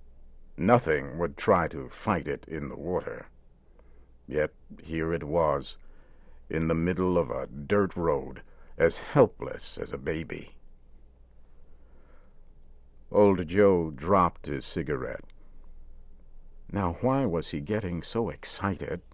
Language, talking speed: English, 115 wpm